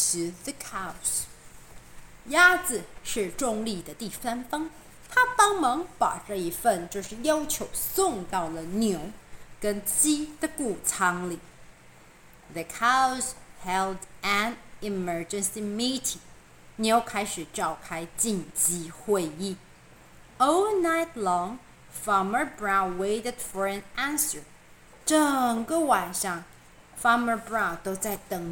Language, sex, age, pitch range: Chinese, female, 30-49, 175-245 Hz